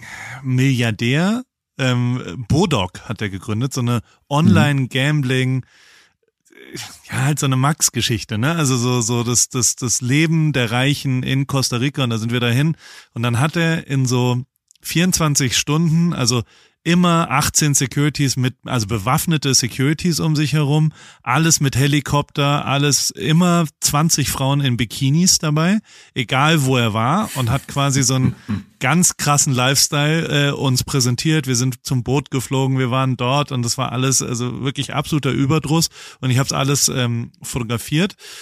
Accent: German